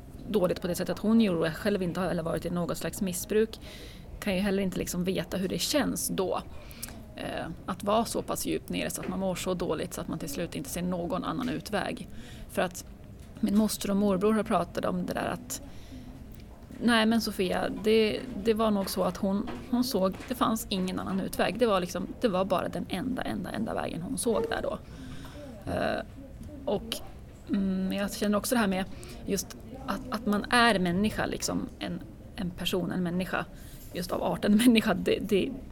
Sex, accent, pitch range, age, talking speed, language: female, native, 190-225 Hz, 30-49, 195 wpm, Swedish